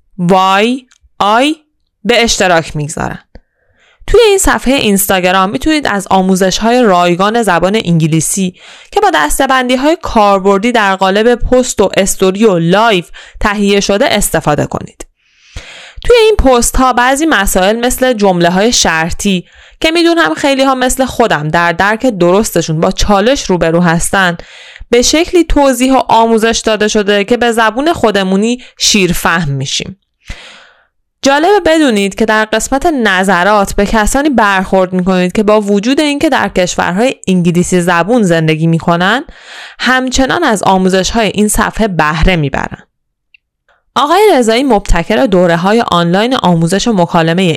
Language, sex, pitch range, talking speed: Persian, female, 185-255 Hz, 130 wpm